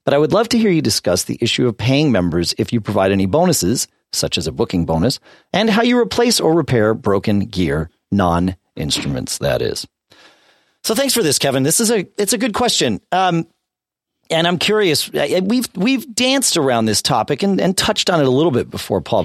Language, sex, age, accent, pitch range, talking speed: English, male, 40-59, American, 100-160 Hz, 205 wpm